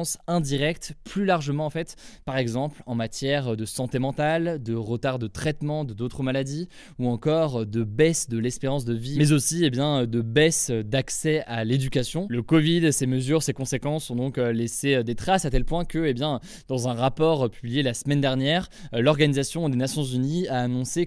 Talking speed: 190 wpm